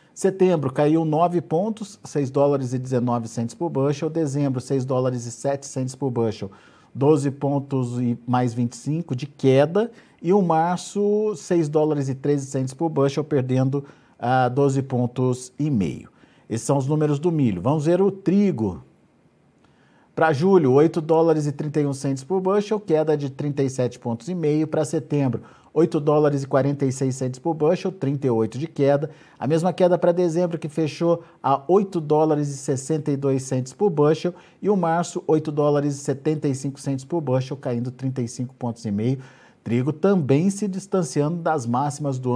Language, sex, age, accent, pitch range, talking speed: Portuguese, male, 50-69, Brazilian, 130-165 Hz, 160 wpm